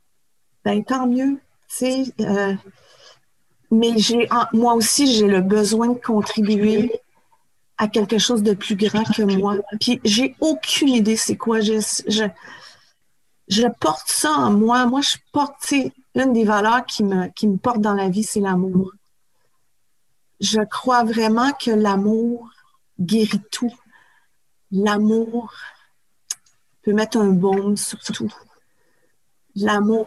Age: 40-59